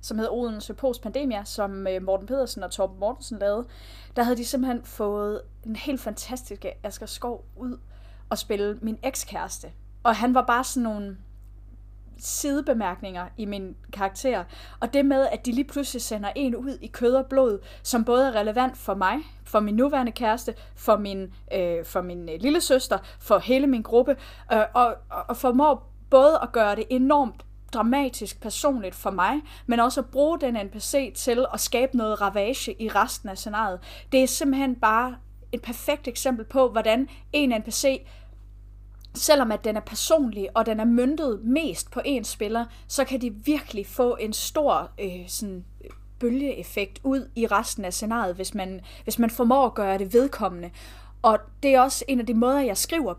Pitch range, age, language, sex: 205-265 Hz, 30-49, Danish, female